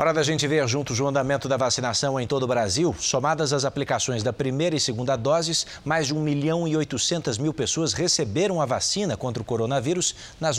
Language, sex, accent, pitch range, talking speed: Portuguese, male, Brazilian, 120-155 Hz, 205 wpm